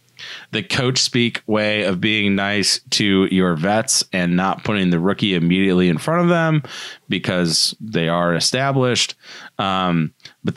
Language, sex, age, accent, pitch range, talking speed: English, male, 30-49, American, 90-120 Hz, 150 wpm